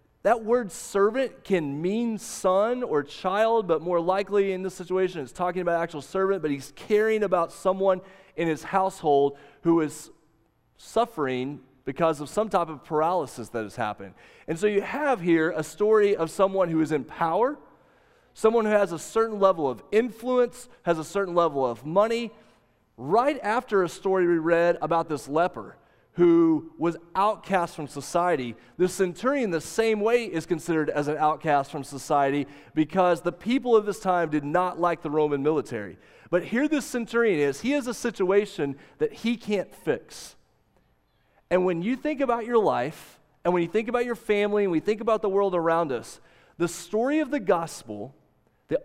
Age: 30-49